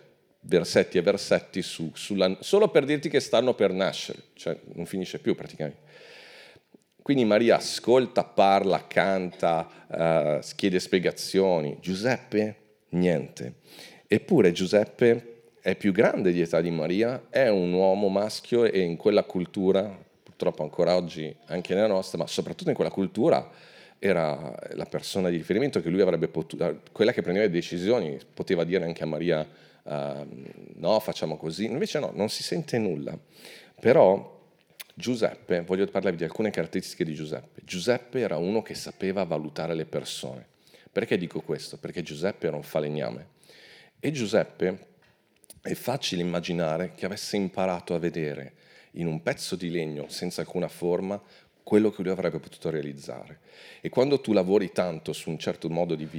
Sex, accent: male, native